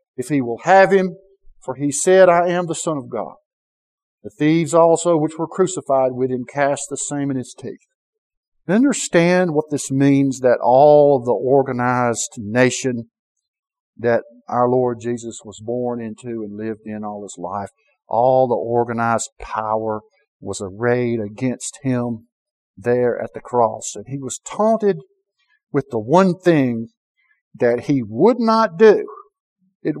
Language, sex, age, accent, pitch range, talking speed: English, male, 50-69, American, 120-190 Hz, 150 wpm